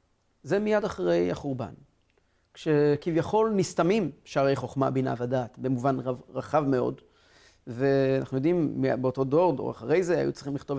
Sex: male